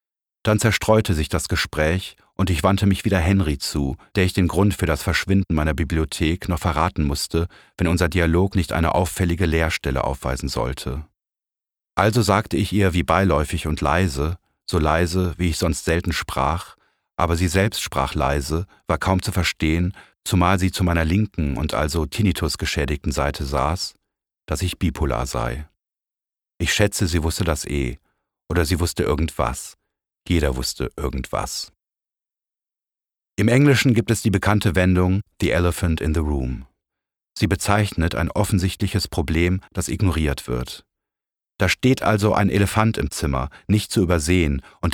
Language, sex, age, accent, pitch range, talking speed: German, male, 40-59, German, 75-95 Hz, 155 wpm